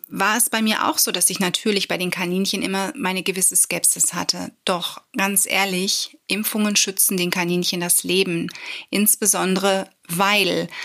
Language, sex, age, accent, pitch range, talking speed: German, female, 30-49, German, 185-220 Hz, 155 wpm